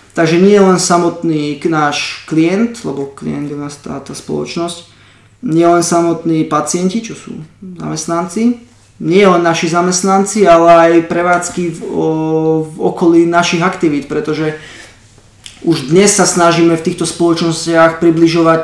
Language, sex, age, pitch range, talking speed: Slovak, male, 20-39, 160-180 Hz, 135 wpm